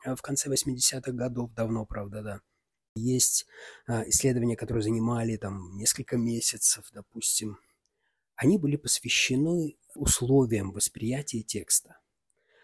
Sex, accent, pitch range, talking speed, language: male, native, 110-140 Hz, 100 wpm, Russian